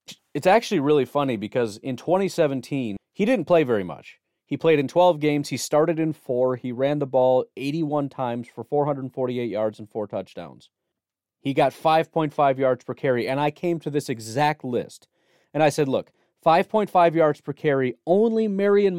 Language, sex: English, male